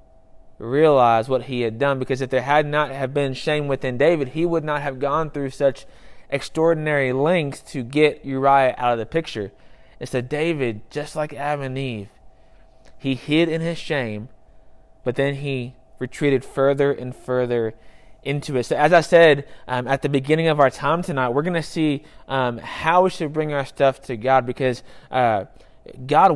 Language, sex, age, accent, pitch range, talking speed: English, male, 20-39, American, 130-160 Hz, 180 wpm